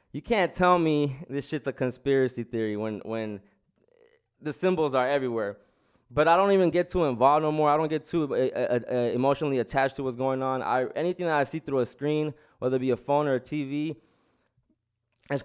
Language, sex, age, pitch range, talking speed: English, male, 20-39, 130-165 Hz, 205 wpm